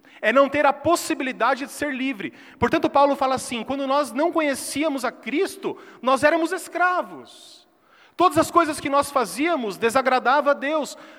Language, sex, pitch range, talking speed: Portuguese, male, 195-300 Hz, 160 wpm